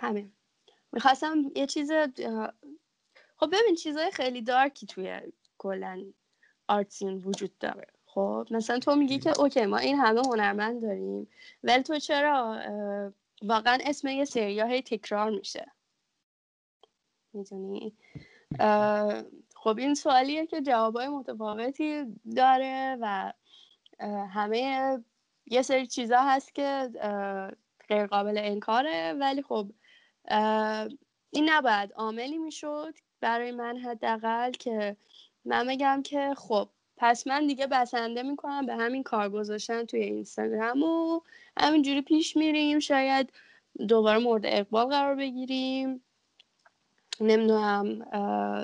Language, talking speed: Persian, 110 wpm